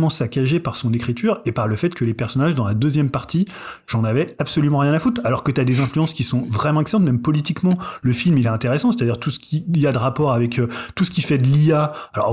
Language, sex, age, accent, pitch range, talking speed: French, male, 30-49, French, 120-150 Hz, 270 wpm